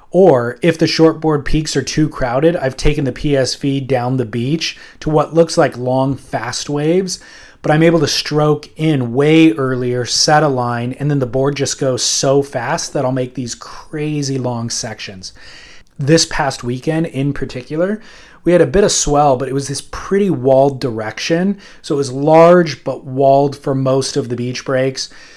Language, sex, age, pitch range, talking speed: English, male, 30-49, 130-160 Hz, 185 wpm